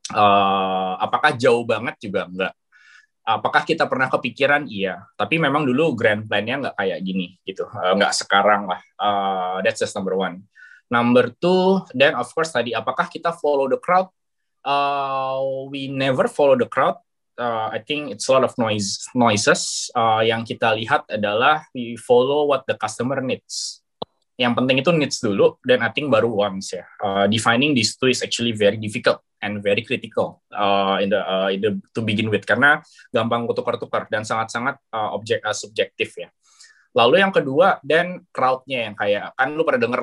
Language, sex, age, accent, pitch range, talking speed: Indonesian, male, 20-39, native, 105-140 Hz, 175 wpm